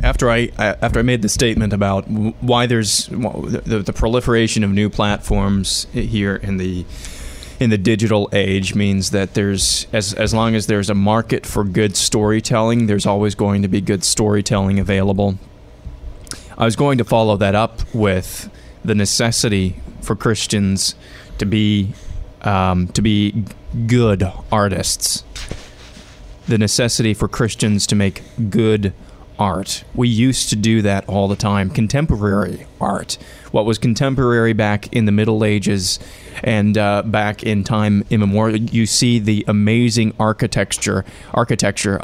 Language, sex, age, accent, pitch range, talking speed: English, male, 20-39, American, 100-115 Hz, 145 wpm